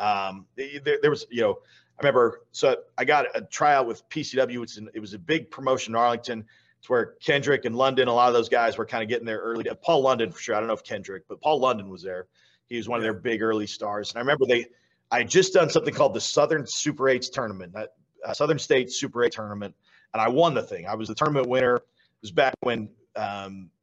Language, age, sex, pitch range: English, 40-59, male, 110-135 Hz